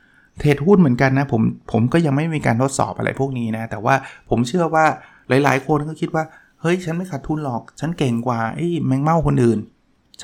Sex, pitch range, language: male, 115-145 Hz, Thai